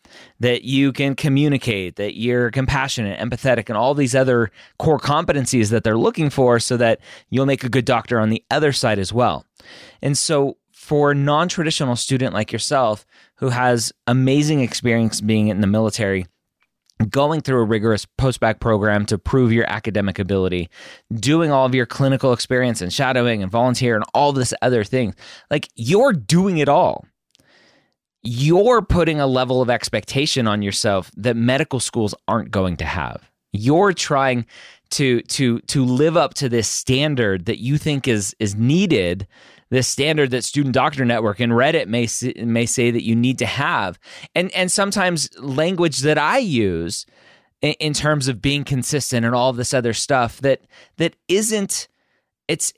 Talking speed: 165 wpm